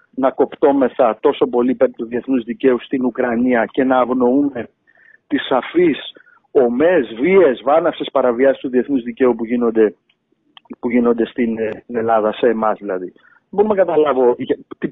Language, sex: Greek, male